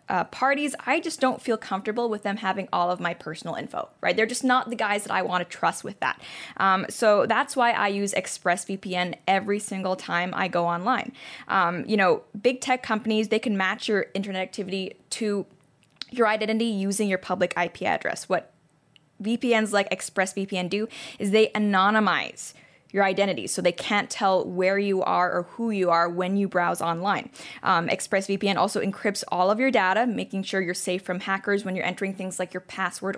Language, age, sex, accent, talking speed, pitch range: English, 10-29, female, American, 195 wpm, 185-215 Hz